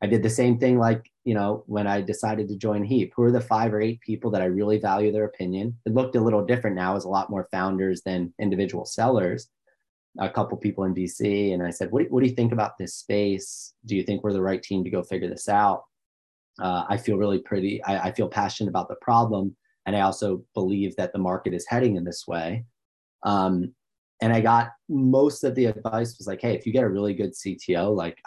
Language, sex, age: English, male, 30-49